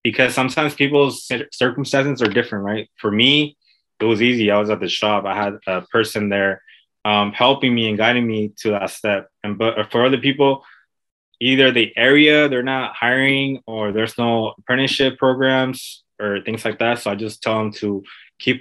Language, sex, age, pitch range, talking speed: English, male, 20-39, 105-125 Hz, 185 wpm